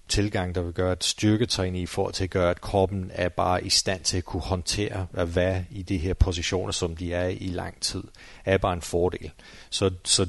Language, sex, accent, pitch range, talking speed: Danish, male, native, 90-100 Hz, 220 wpm